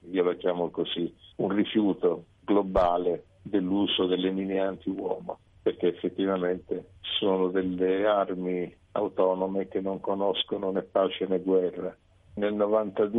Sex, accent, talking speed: male, native, 105 wpm